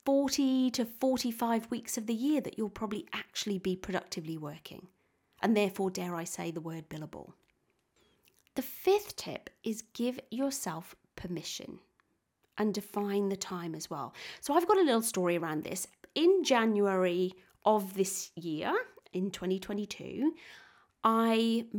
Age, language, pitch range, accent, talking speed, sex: 30-49, English, 185-255 Hz, British, 140 wpm, female